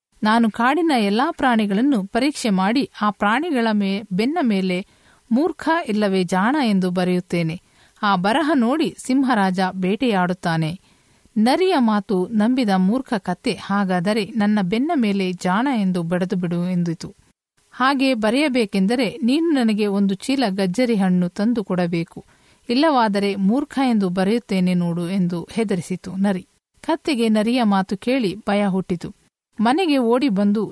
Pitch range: 190-250 Hz